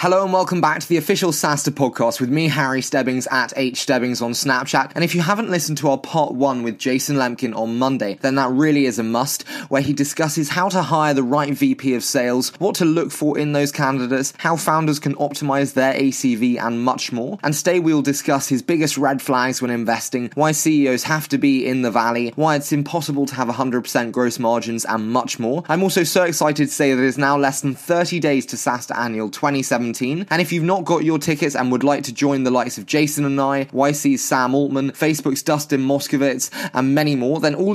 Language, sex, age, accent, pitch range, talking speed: English, male, 20-39, British, 130-160 Hz, 225 wpm